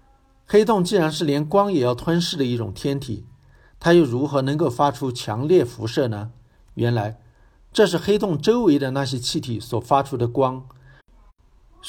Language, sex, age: Chinese, male, 50-69